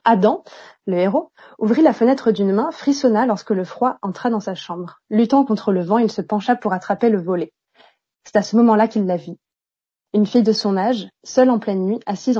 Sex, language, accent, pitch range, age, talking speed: female, French, French, 200-255 Hz, 30-49, 215 wpm